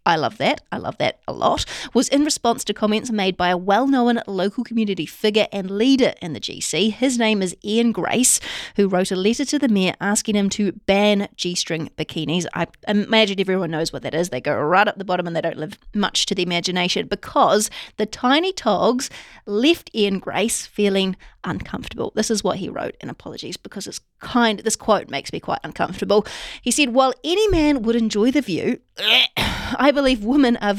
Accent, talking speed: Australian, 200 wpm